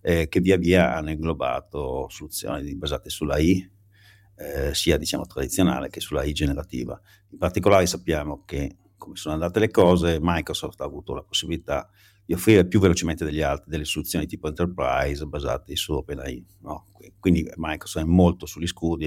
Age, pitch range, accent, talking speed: 50-69, 80-100 Hz, native, 160 wpm